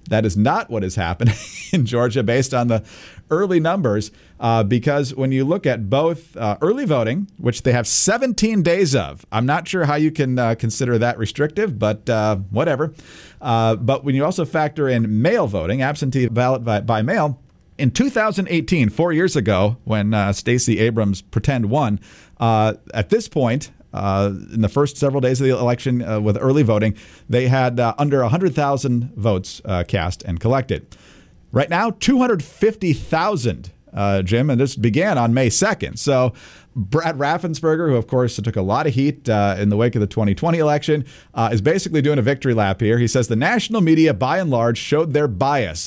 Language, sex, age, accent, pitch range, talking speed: English, male, 50-69, American, 110-150 Hz, 195 wpm